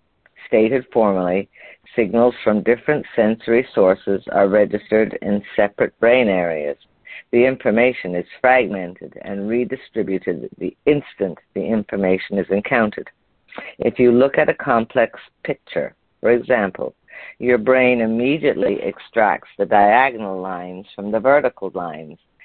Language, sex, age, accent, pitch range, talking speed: English, female, 50-69, American, 100-125 Hz, 120 wpm